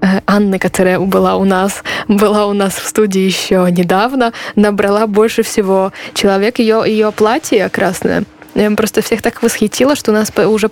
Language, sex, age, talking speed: Polish, female, 20-39, 155 wpm